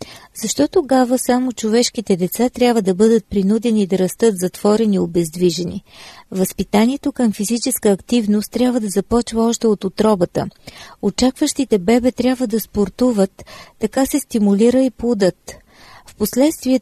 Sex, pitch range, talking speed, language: female, 195-240 Hz, 125 wpm, Bulgarian